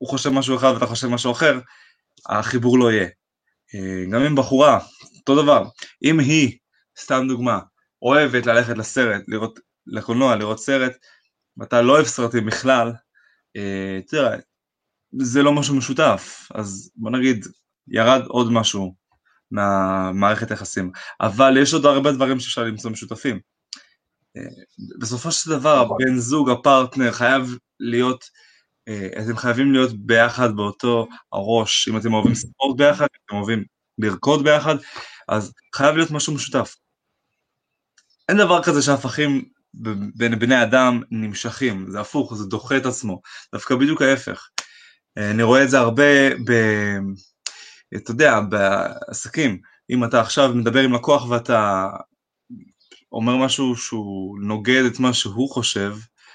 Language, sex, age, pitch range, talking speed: Hebrew, male, 20-39, 110-135 Hz, 130 wpm